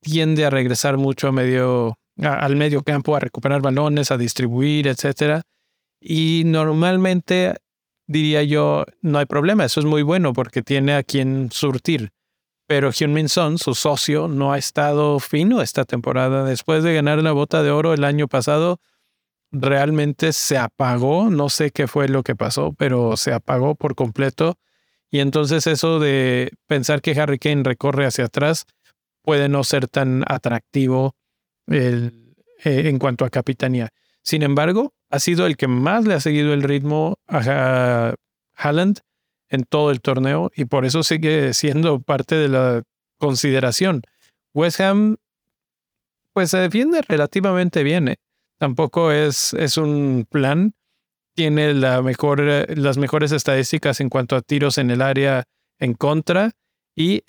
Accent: Mexican